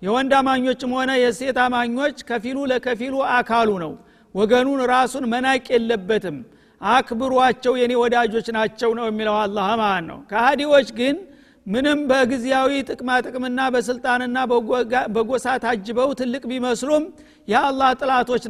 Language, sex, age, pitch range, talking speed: Amharic, male, 50-69, 230-265 Hz, 105 wpm